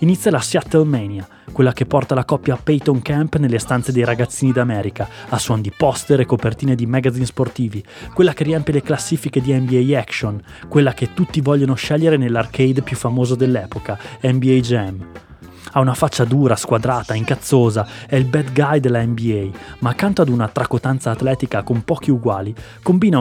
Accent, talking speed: native, 175 wpm